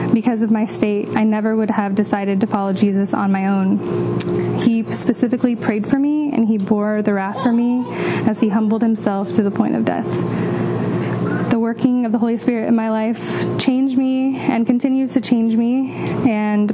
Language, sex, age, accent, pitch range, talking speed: English, female, 10-29, American, 205-235 Hz, 190 wpm